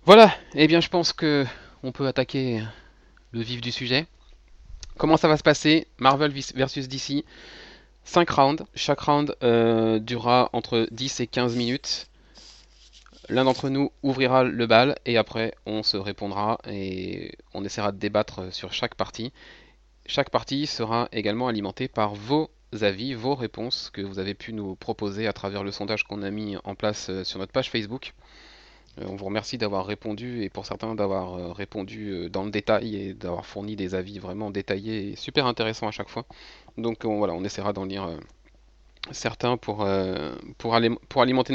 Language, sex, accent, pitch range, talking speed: French, male, French, 100-135 Hz, 180 wpm